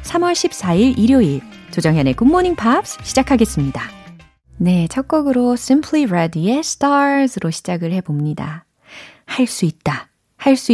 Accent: native